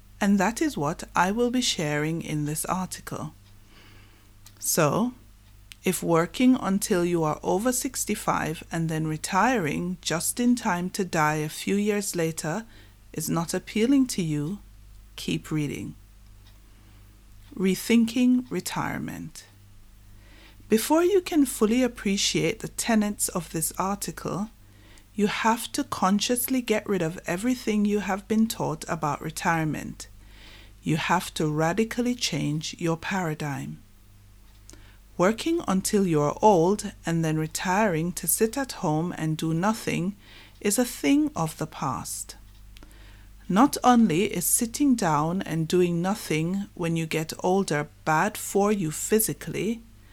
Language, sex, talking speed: English, female, 130 wpm